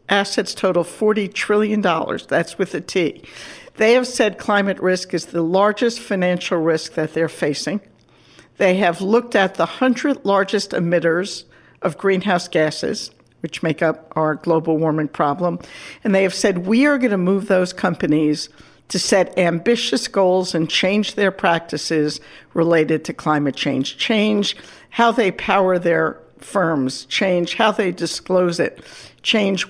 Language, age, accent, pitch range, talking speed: English, 60-79, American, 160-205 Hz, 150 wpm